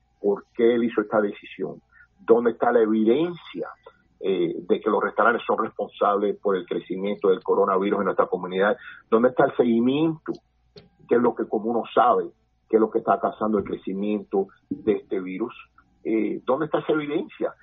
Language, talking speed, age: Spanish, 175 wpm, 40-59